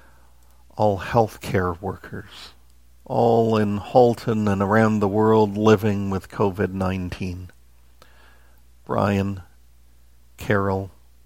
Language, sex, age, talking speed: English, male, 50-69, 80 wpm